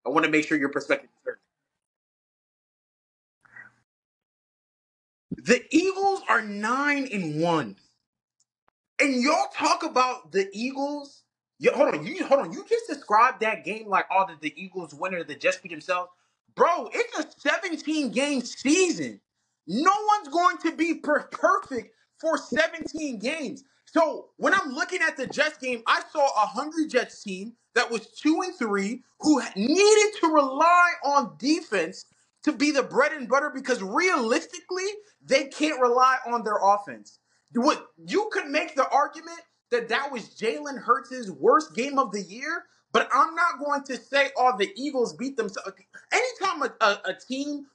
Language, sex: English, male